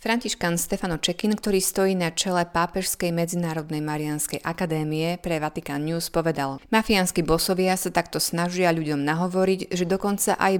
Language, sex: Slovak, female